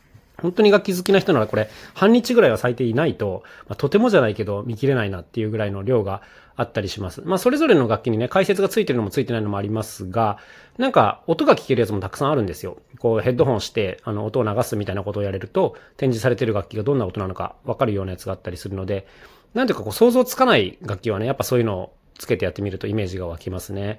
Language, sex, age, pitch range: Japanese, male, 30-49, 105-160 Hz